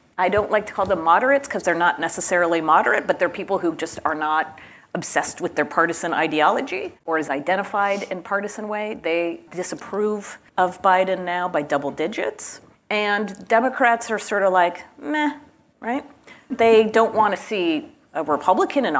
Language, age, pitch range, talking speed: English, 40-59, 160-210 Hz, 170 wpm